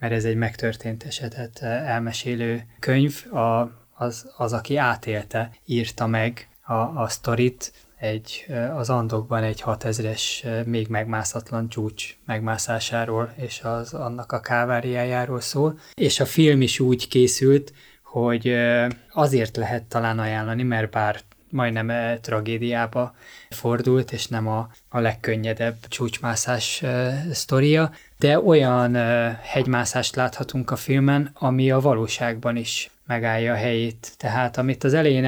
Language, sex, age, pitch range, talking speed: Hungarian, male, 20-39, 115-130 Hz, 125 wpm